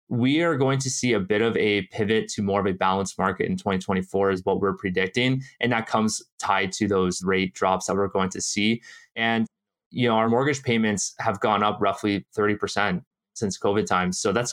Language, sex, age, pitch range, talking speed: English, male, 20-39, 100-115 Hz, 210 wpm